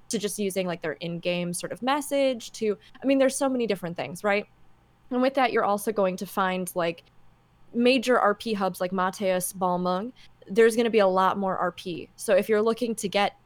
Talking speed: 205 wpm